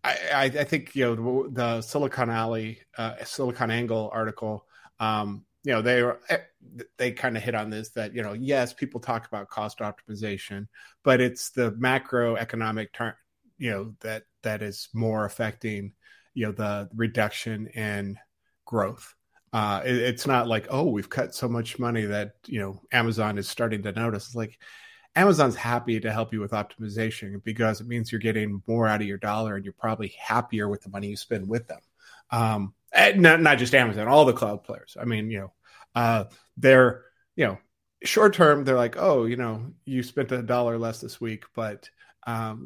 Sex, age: male, 30-49